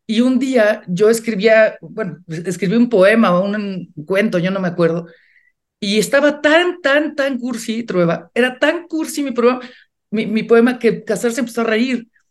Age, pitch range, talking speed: 50-69, 195-240 Hz, 175 wpm